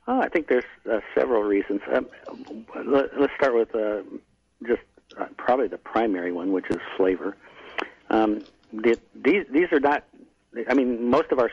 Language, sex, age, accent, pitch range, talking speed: English, male, 50-69, American, 105-140 Hz, 170 wpm